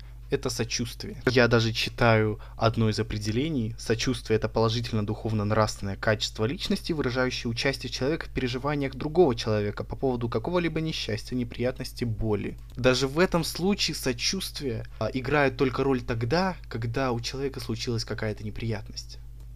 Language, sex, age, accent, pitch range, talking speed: Russian, male, 20-39, native, 115-135 Hz, 125 wpm